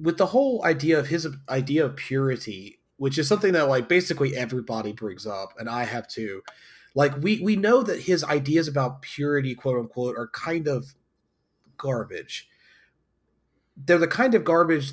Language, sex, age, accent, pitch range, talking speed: English, male, 30-49, American, 120-150 Hz, 170 wpm